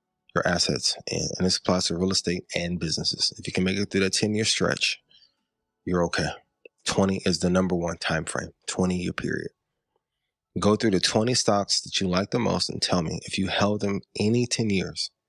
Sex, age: male, 20-39